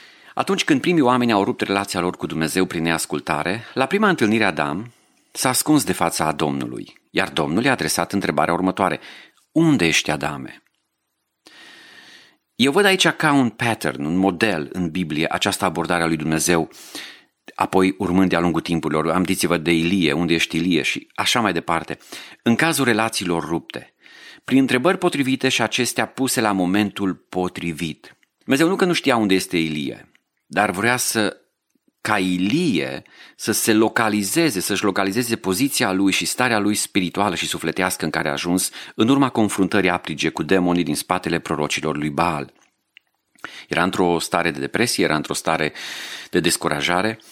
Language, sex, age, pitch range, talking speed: Romanian, male, 40-59, 85-110 Hz, 160 wpm